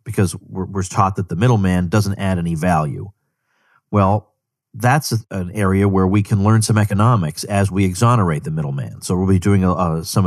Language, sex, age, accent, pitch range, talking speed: English, male, 40-59, American, 95-120 Hz, 175 wpm